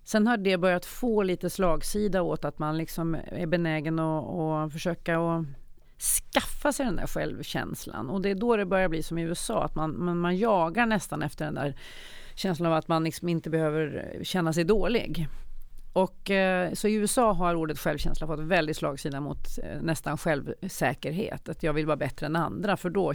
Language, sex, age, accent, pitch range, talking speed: English, female, 40-59, Swedish, 160-200 Hz, 190 wpm